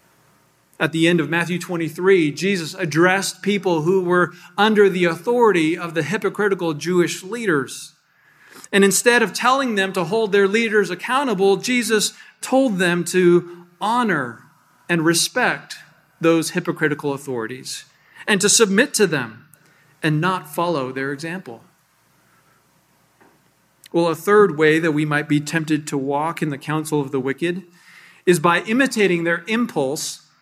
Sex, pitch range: male, 170-225 Hz